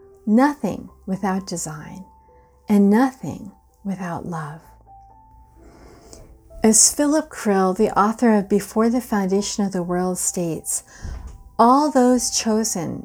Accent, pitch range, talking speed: American, 190-245 Hz, 105 wpm